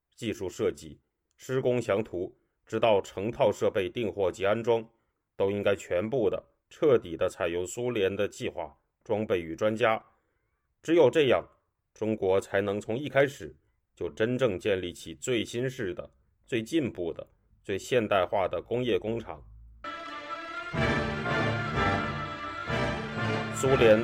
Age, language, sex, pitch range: 30-49, Chinese, male, 95-120 Hz